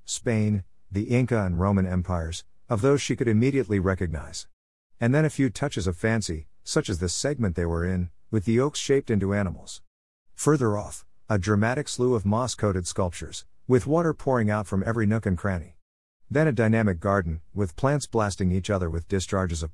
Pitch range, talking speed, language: 90-120 Hz, 190 wpm, English